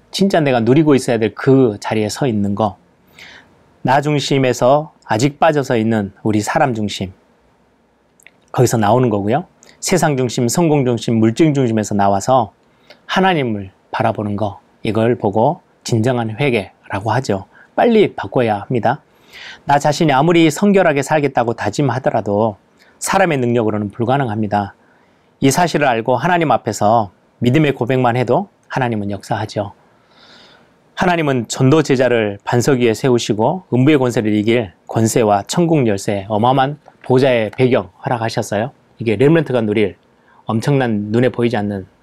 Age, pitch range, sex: 30-49, 110-145 Hz, male